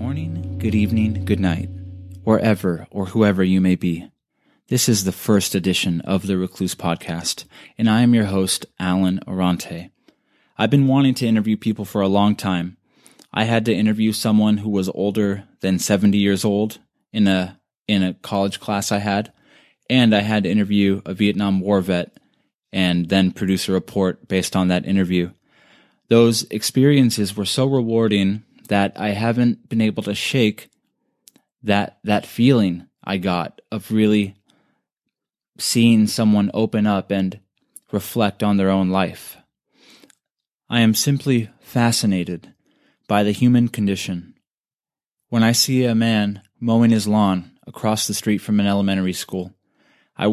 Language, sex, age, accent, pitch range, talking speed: English, male, 20-39, American, 95-110 Hz, 155 wpm